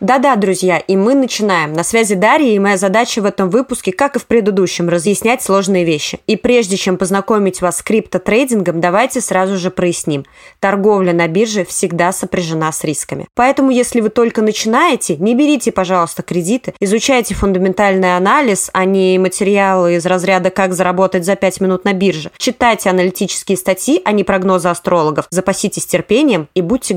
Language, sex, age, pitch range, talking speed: Russian, female, 20-39, 185-230 Hz, 165 wpm